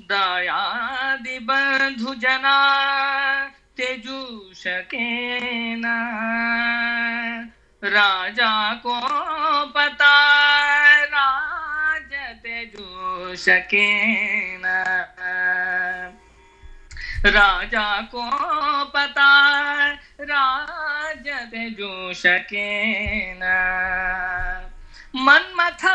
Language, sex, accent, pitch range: Kannada, female, native, 230-305 Hz